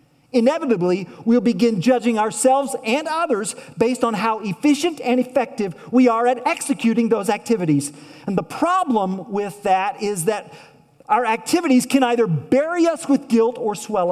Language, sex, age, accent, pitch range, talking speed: English, male, 40-59, American, 145-240 Hz, 155 wpm